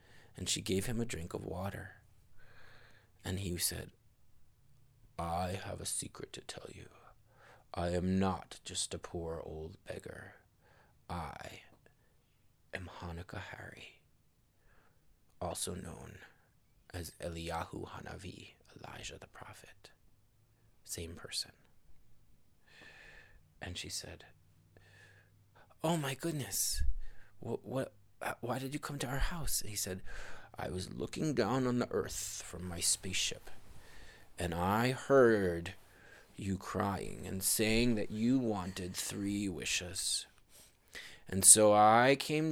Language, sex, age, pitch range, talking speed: English, male, 30-49, 90-110 Hz, 120 wpm